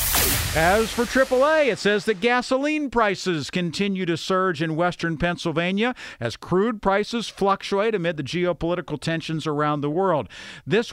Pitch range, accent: 140-185 Hz, American